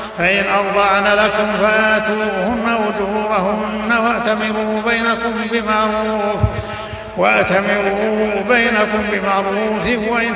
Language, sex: Arabic, male